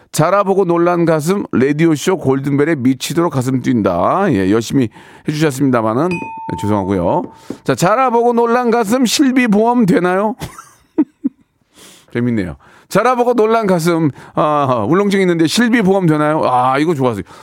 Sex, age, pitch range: male, 40-59, 150-225 Hz